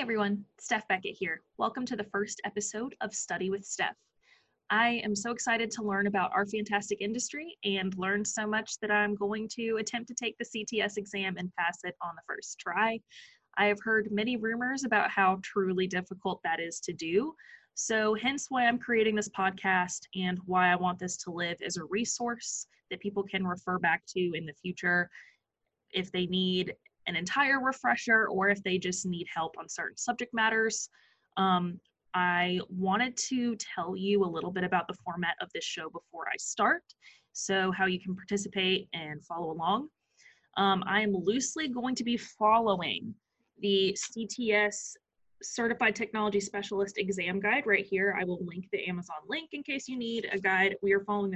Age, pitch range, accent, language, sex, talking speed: 20-39, 185-225 Hz, American, English, female, 180 wpm